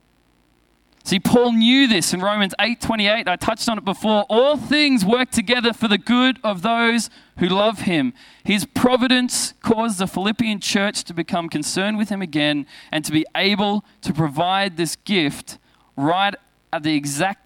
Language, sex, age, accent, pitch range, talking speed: English, male, 20-39, Australian, 155-235 Hz, 170 wpm